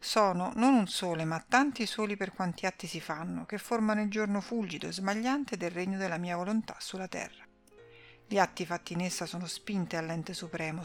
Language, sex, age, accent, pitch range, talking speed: Italian, female, 50-69, native, 175-215 Hz, 195 wpm